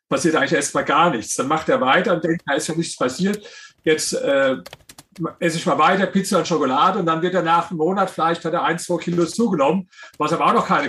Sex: male